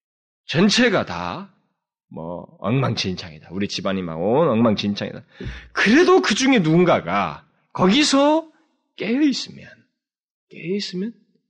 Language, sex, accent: Korean, male, native